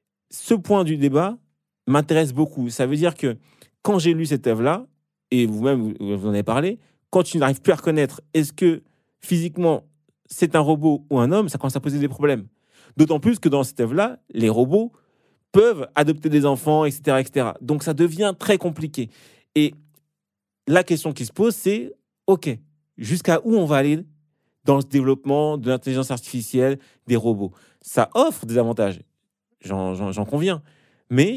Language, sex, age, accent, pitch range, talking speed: French, male, 30-49, French, 130-175 Hz, 175 wpm